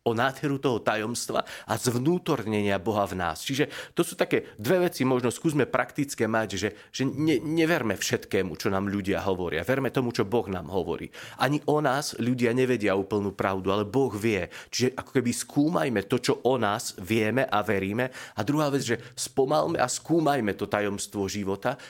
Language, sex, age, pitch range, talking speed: Slovak, male, 30-49, 100-125 Hz, 180 wpm